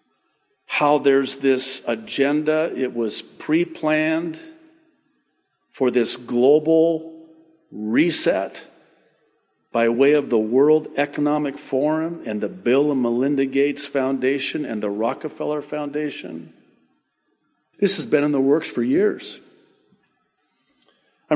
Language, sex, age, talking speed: English, male, 50-69, 105 wpm